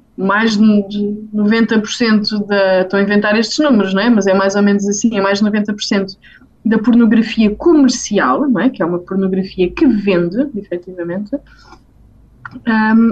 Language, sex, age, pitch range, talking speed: Portuguese, female, 20-39, 200-260 Hz, 155 wpm